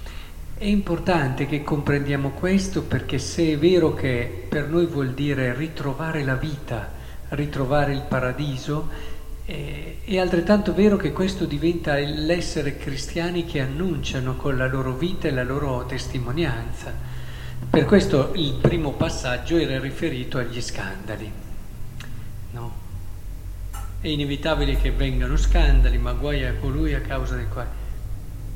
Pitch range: 105-145 Hz